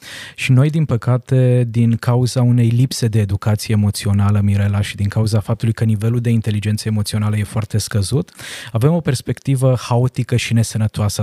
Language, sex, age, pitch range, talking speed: Romanian, male, 20-39, 110-130 Hz, 160 wpm